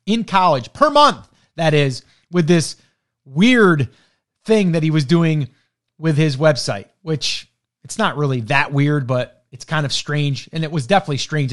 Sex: male